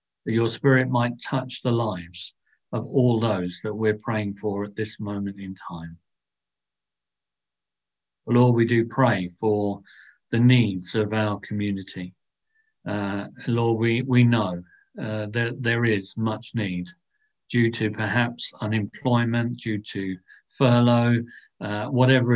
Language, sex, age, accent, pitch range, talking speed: English, male, 50-69, British, 100-120 Hz, 130 wpm